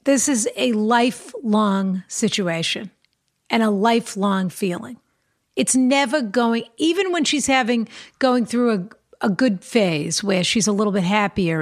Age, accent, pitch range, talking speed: 50-69, American, 195-245 Hz, 145 wpm